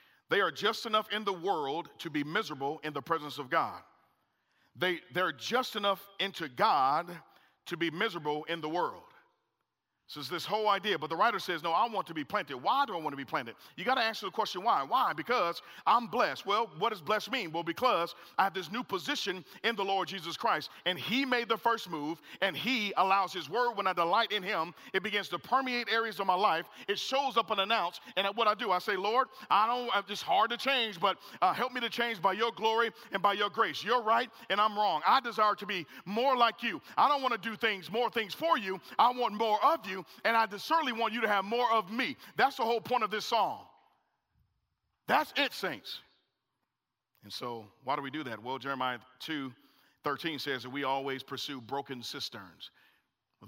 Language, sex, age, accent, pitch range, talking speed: English, male, 40-59, American, 160-230 Hz, 220 wpm